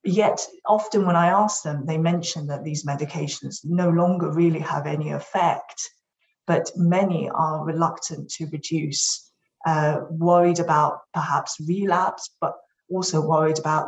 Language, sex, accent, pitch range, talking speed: English, female, British, 160-185 Hz, 140 wpm